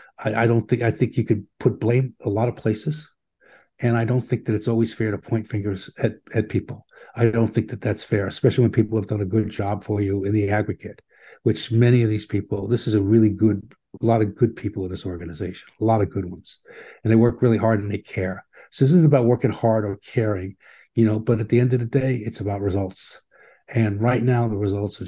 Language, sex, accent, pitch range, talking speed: English, male, American, 105-125 Hz, 245 wpm